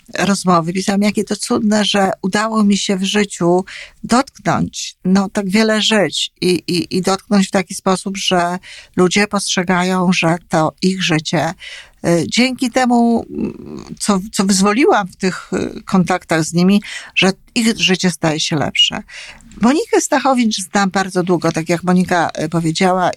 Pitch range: 175-210 Hz